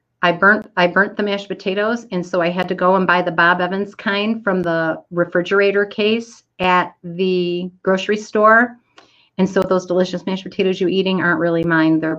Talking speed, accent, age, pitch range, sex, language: 190 wpm, American, 40-59, 170-200 Hz, female, English